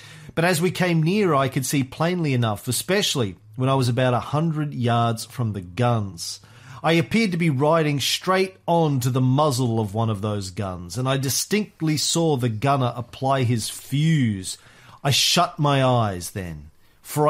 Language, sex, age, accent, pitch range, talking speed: English, male, 40-59, Australian, 120-165 Hz, 175 wpm